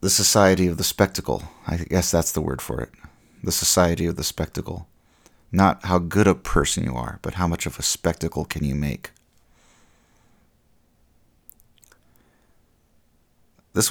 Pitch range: 80-95 Hz